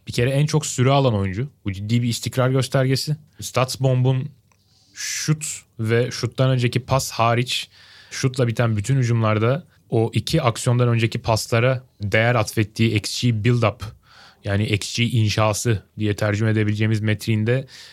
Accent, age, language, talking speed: native, 30-49, Turkish, 135 wpm